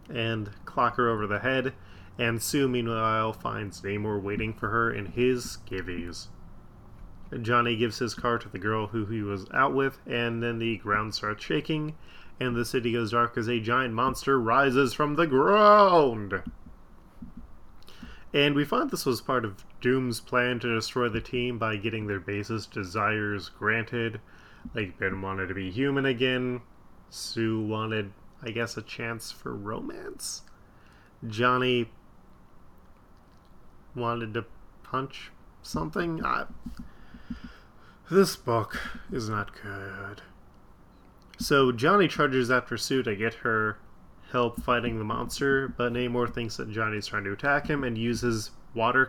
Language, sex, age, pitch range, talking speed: English, male, 20-39, 105-130 Hz, 145 wpm